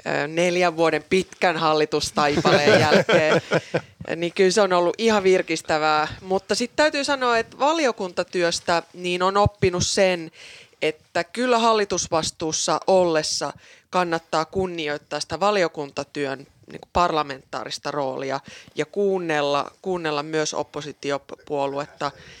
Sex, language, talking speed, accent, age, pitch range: female, Finnish, 95 wpm, native, 20-39, 150-195 Hz